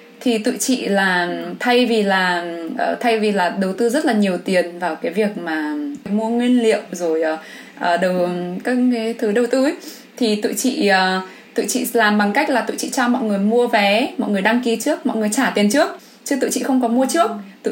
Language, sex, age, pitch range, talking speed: English, female, 20-39, 205-250 Hz, 215 wpm